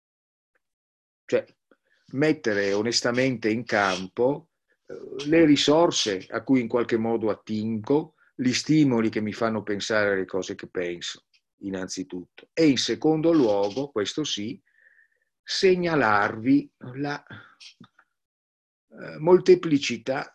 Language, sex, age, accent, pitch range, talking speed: Italian, male, 50-69, native, 105-125 Hz, 95 wpm